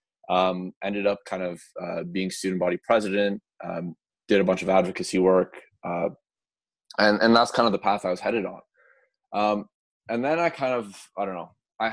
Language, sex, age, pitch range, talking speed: English, male, 20-39, 90-110 Hz, 195 wpm